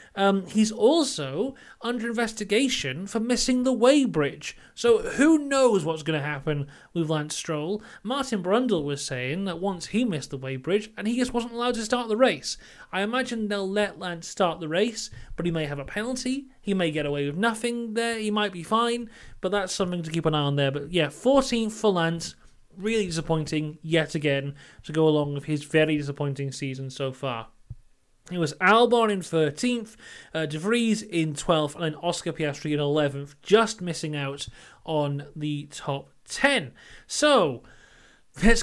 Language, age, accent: English, 30-49, British